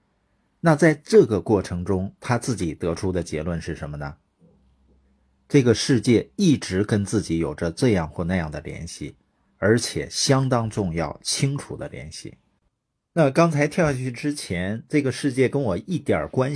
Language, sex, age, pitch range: Chinese, male, 50-69, 90-135 Hz